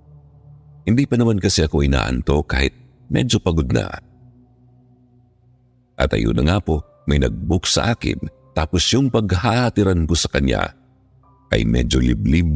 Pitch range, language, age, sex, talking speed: 70-105 Hz, Filipino, 50-69, male, 135 wpm